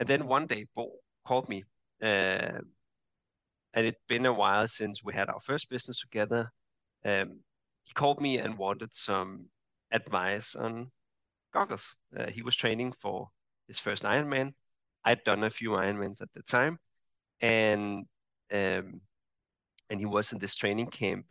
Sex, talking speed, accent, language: male, 150 wpm, Danish, English